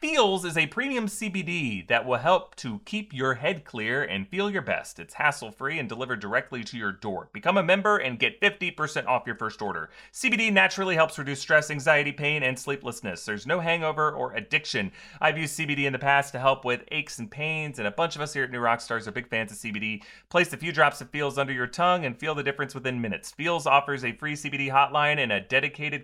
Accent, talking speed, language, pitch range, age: American, 230 wpm, English, 130-175 Hz, 30-49